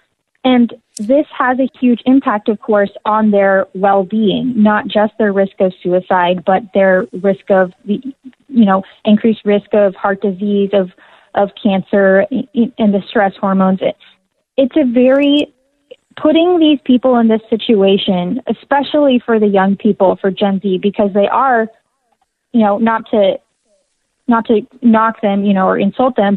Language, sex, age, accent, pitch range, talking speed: English, female, 20-39, American, 195-230 Hz, 155 wpm